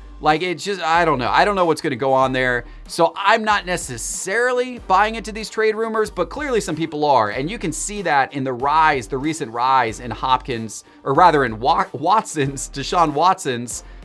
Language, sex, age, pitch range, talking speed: English, male, 30-49, 140-180 Hz, 205 wpm